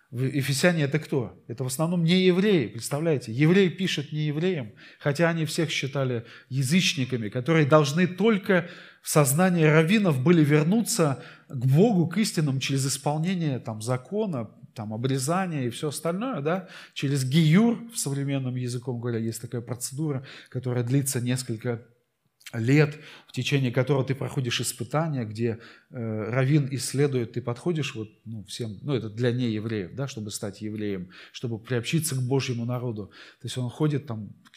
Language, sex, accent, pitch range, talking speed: Russian, male, native, 115-145 Hz, 155 wpm